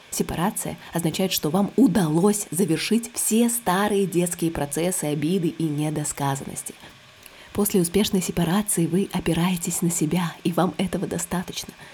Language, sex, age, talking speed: Russian, female, 20-39, 120 wpm